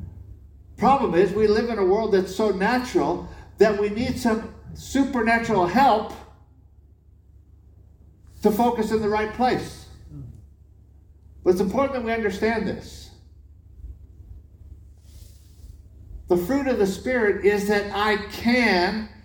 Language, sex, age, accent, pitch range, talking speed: English, male, 60-79, American, 85-130 Hz, 120 wpm